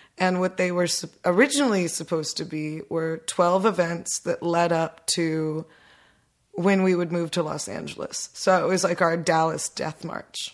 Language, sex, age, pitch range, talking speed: English, female, 20-39, 170-190 Hz, 170 wpm